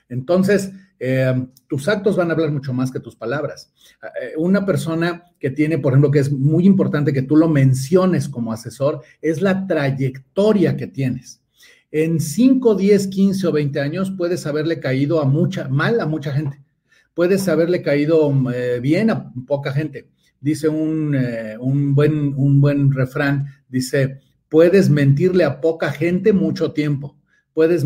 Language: Spanish